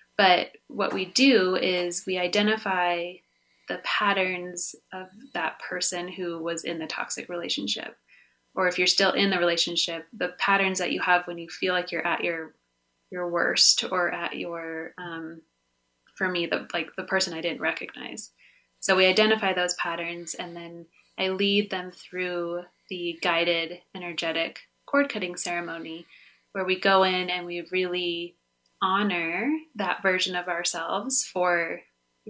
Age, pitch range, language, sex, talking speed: 20-39, 170-185 Hz, English, female, 155 wpm